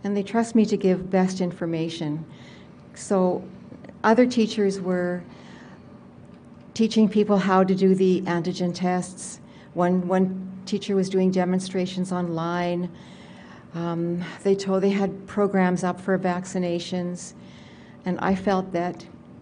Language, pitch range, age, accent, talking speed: English, 175-195 Hz, 60-79, American, 125 wpm